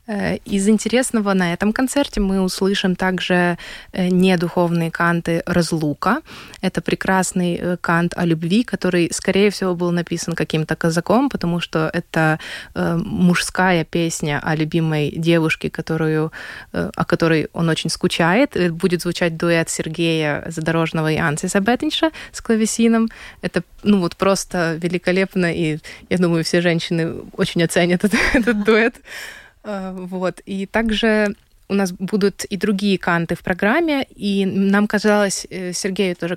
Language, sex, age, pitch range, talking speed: Russian, female, 20-39, 170-200 Hz, 130 wpm